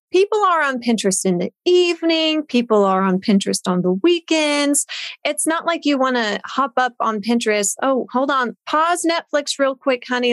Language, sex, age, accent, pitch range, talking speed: English, female, 30-49, American, 210-285 Hz, 185 wpm